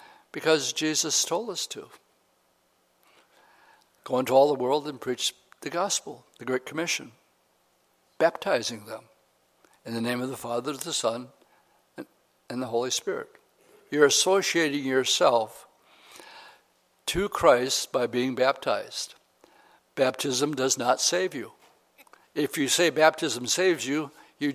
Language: English